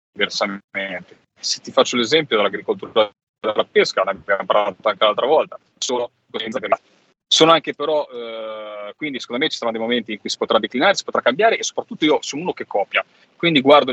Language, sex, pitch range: Italian, male, 110-170 Hz